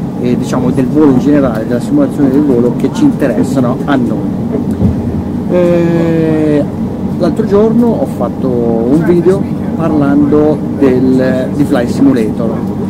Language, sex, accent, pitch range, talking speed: Italian, male, native, 145-215 Hz, 120 wpm